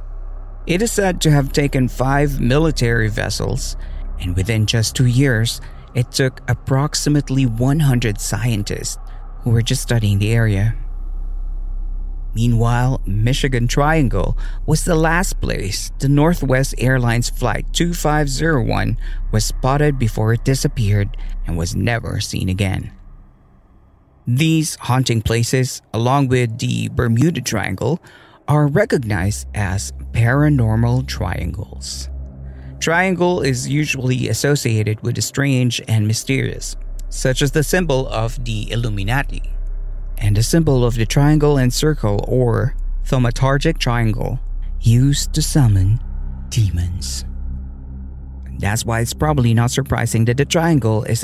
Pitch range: 100-135 Hz